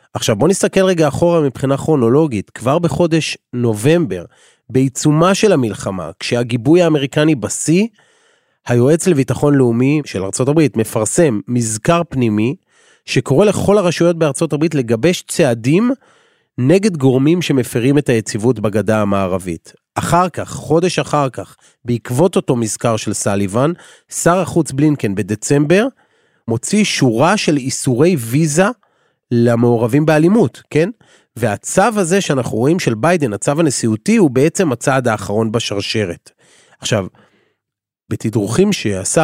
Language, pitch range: Hebrew, 120-175 Hz